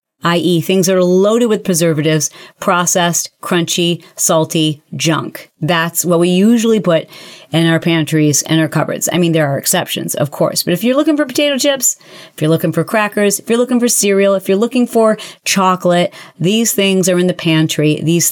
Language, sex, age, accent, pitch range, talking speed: English, female, 40-59, American, 160-190 Hz, 190 wpm